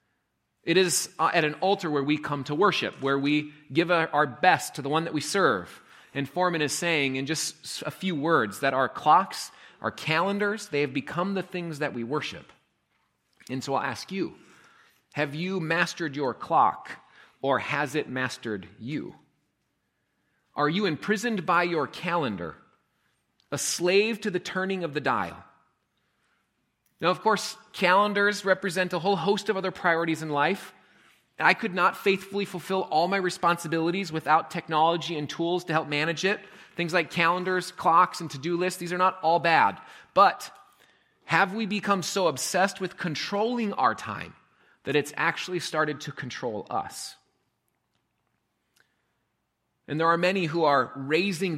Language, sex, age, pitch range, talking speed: English, male, 30-49, 150-185 Hz, 160 wpm